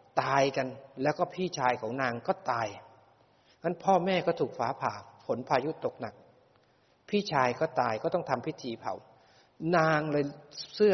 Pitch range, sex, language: 125-150 Hz, male, Thai